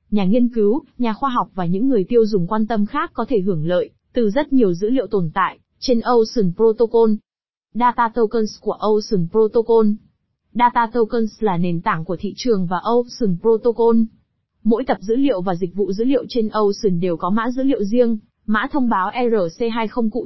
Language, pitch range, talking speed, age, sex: Vietnamese, 205-250 Hz, 195 wpm, 20-39, female